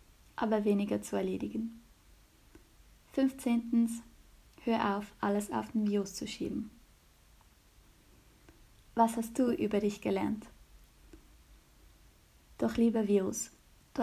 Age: 20-39